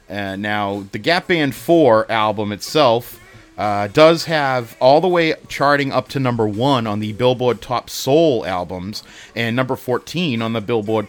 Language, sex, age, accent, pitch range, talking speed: English, male, 30-49, American, 110-145 Hz, 170 wpm